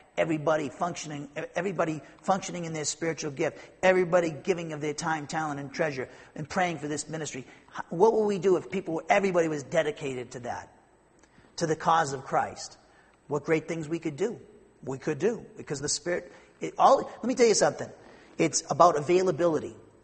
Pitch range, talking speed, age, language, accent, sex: 145-170 Hz, 180 wpm, 40-59, English, American, male